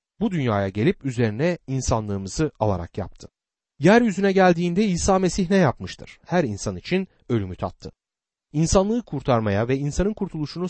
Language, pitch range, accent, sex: Turkish, 105-175 Hz, native, male